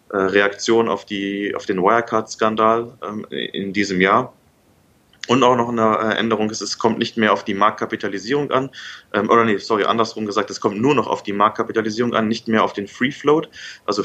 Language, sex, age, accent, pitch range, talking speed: German, male, 30-49, German, 100-115 Hz, 190 wpm